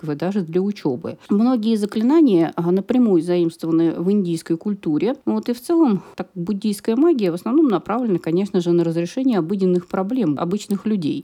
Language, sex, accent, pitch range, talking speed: Russian, female, native, 165-230 Hz, 140 wpm